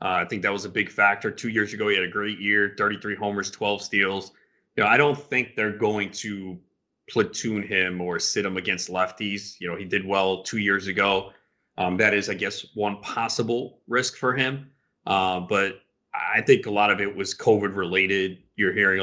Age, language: 30-49, English